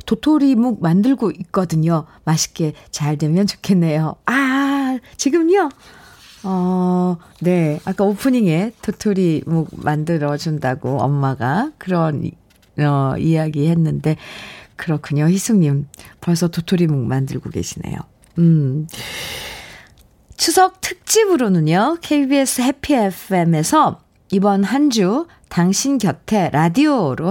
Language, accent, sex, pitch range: Korean, native, female, 155-240 Hz